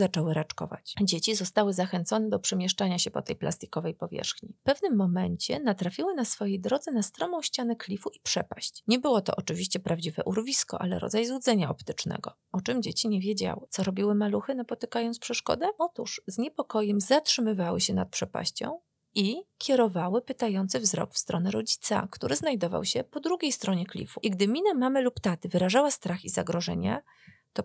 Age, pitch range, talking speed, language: 30-49, 190-235 Hz, 165 wpm, Polish